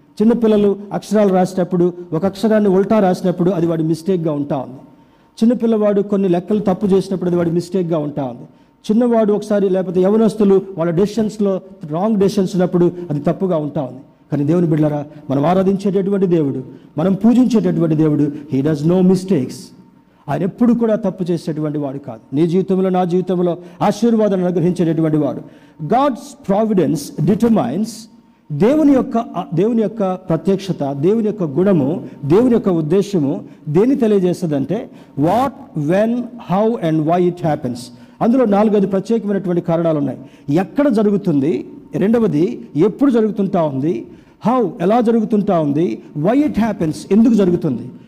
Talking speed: 125 wpm